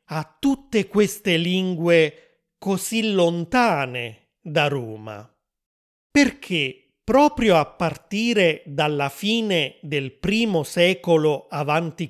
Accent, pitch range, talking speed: native, 150-200 Hz, 90 wpm